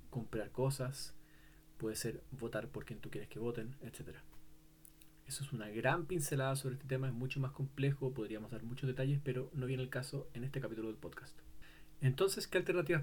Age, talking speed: 30-49, 190 wpm